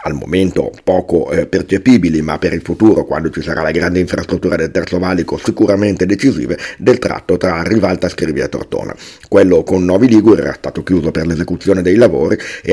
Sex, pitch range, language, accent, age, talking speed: male, 85-105 Hz, Italian, native, 50-69, 185 wpm